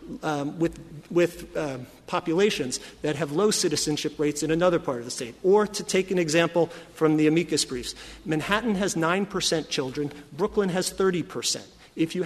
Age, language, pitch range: 40-59, English, 150-185 Hz